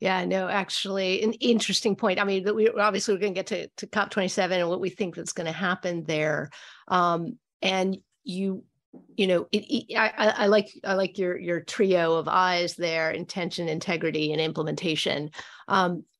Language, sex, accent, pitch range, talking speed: English, female, American, 165-200 Hz, 190 wpm